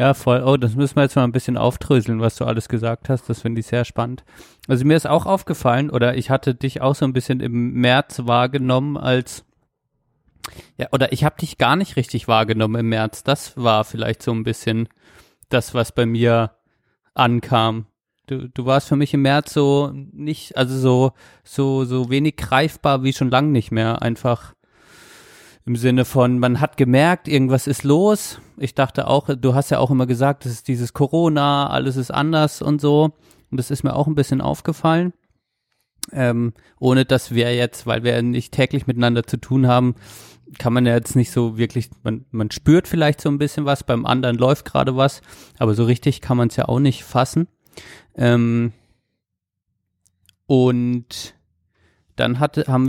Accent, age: German, 30-49